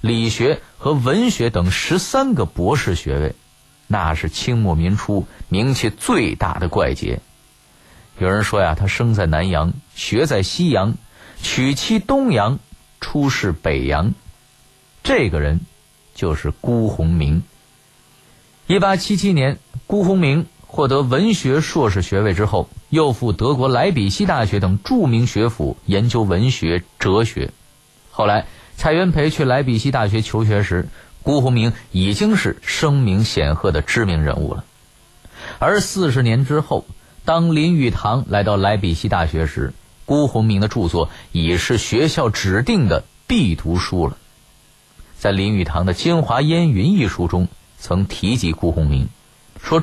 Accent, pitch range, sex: native, 90-145 Hz, male